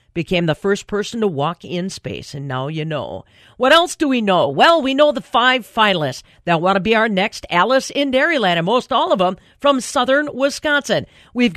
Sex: female